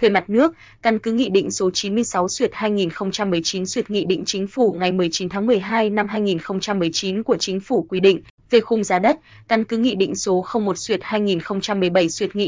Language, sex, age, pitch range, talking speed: Vietnamese, female, 20-39, 185-225 Hz, 180 wpm